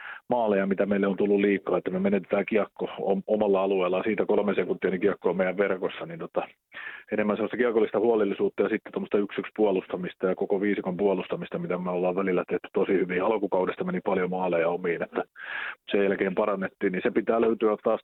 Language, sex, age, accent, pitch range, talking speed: Finnish, male, 30-49, native, 90-110 Hz, 185 wpm